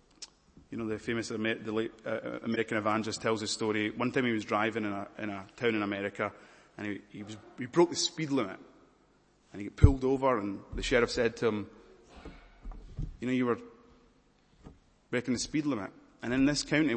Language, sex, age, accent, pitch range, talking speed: English, male, 30-49, British, 105-125 Hz, 200 wpm